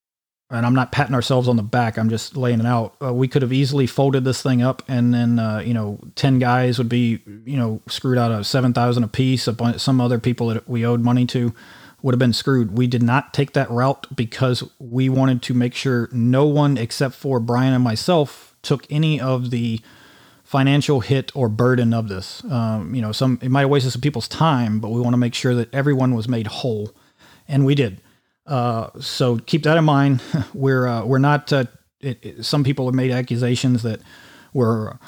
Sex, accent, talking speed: male, American, 215 wpm